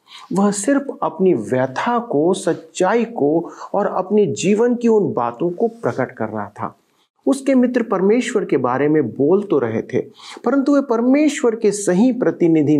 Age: 50-69